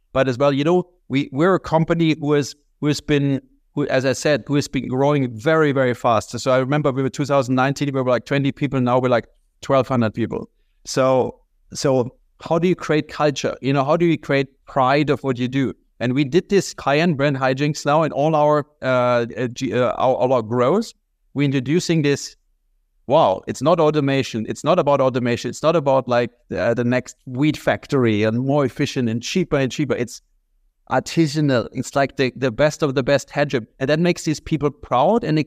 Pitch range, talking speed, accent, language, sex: 130-150 Hz, 210 wpm, German, English, male